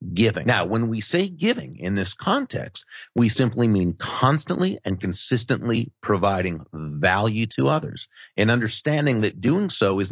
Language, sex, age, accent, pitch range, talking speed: English, male, 40-59, American, 100-125 Hz, 150 wpm